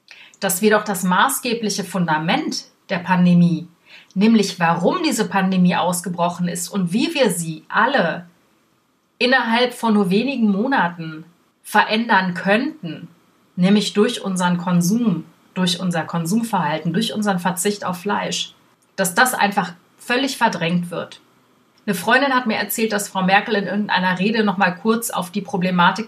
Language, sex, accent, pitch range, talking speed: German, female, German, 180-215 Hz, 140 wpm